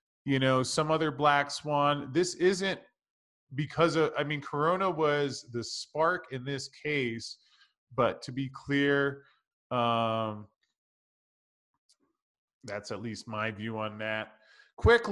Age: 20-39